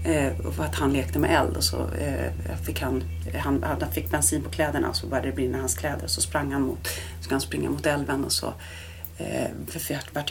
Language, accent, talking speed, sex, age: Swedish, native, 245 wpm, female, 30-49